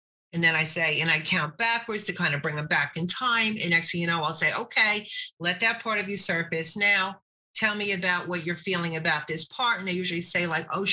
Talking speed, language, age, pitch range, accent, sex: 255 wpm, English, 50-69, 180-220 Hz, American, female